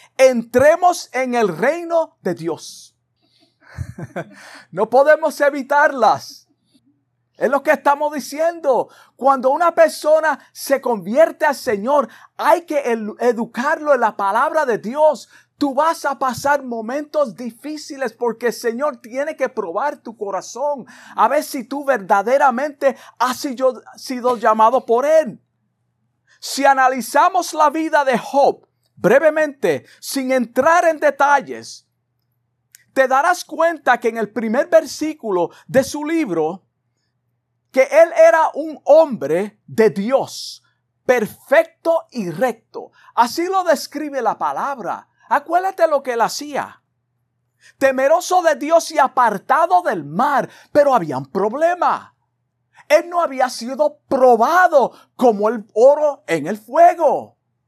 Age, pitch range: 50-69, 230-305 Hz